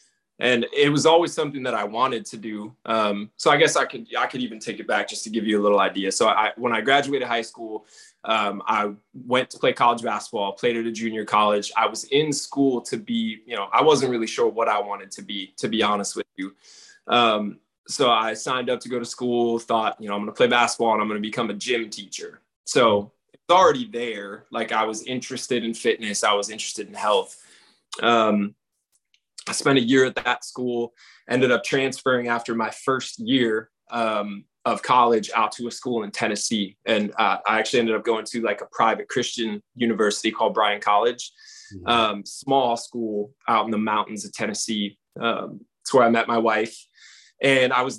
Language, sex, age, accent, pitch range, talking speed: English, male, 20-39, American, 110-125 Hz, 210 wpm